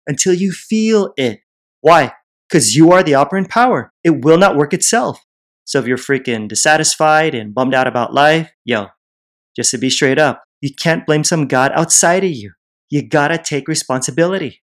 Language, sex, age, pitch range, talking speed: English, male, 30-49, 130-170 Hz, 180 wpm